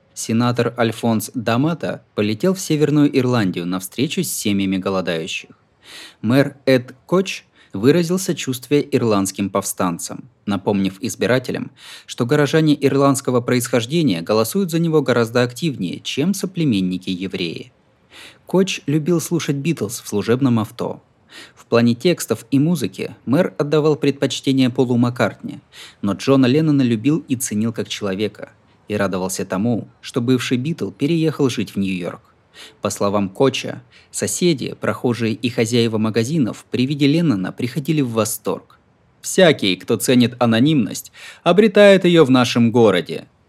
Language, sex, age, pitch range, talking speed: Russian, male, 20-39, 110-150 Hz, 125 wpm